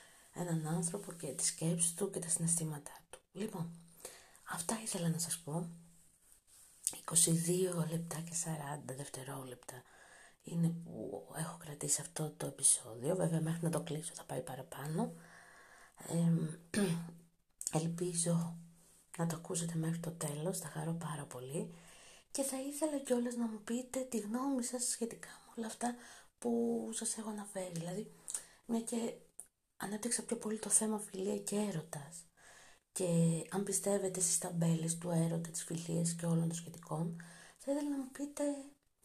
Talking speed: 145 wpm